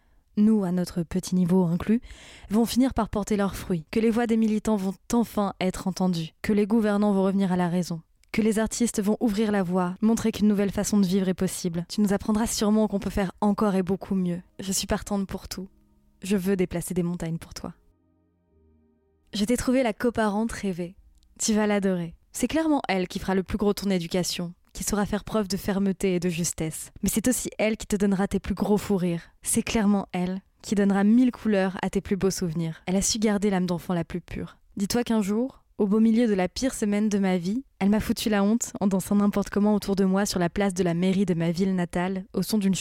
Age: 20-39